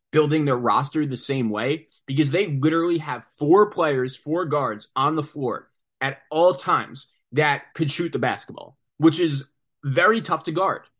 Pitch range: 130-155 Hz